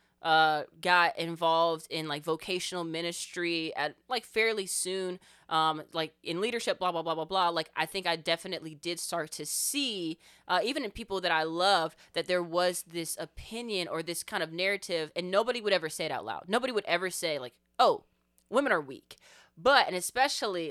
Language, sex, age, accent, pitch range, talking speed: English, female, 20-39, American, 160-195 Hz, 190 wpm